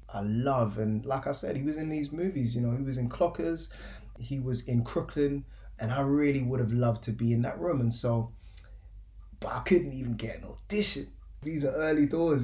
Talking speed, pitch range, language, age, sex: 215 wpm, 110-135 Hz, English, 20-39, male